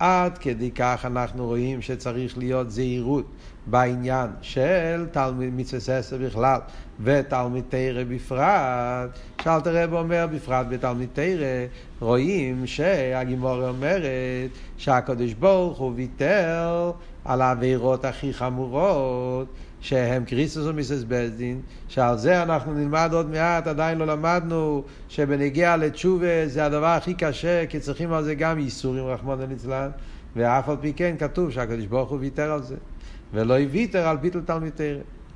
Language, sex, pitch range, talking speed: Hebrew, male, 125-165 Hz, 130 wpm